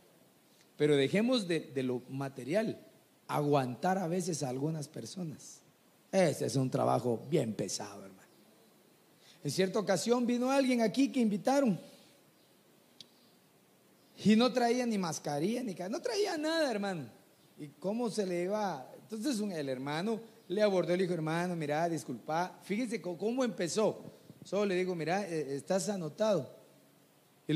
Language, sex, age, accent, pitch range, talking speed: Spanish, male, 40-59, Mexican, 150-210 Hz, 145 wpm